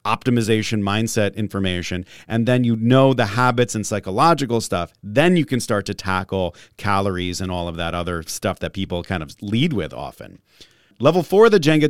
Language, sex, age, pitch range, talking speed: English, male, 40-59, 105-140 Hz, 185 wpm